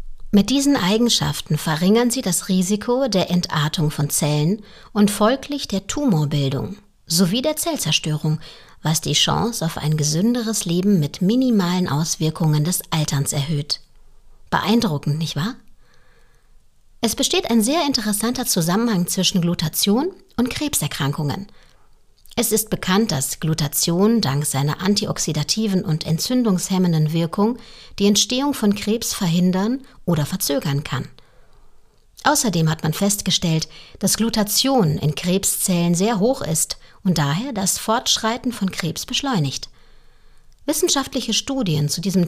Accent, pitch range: German, 160-230 Hz